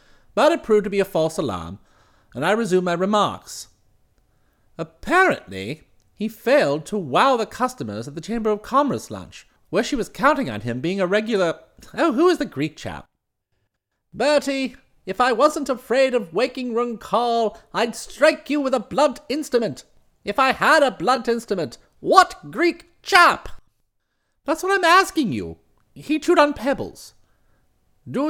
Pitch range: 185-295 Hz